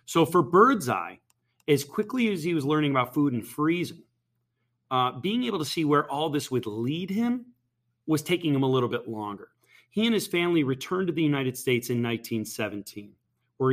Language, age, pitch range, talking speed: English, 30-49, 120-160 Hz, 190 wpm